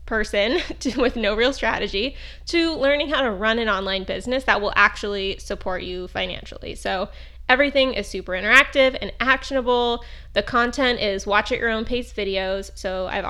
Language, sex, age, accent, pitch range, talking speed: English, female, 20-39, American, 200-250 Hz, 165 wpm